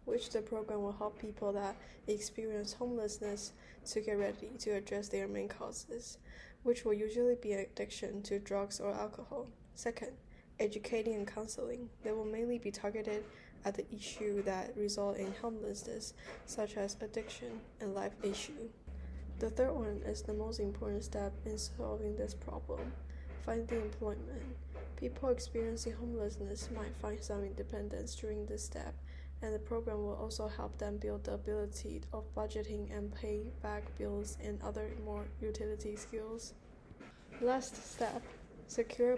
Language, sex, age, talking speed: English, female, 10-29, 145 wpm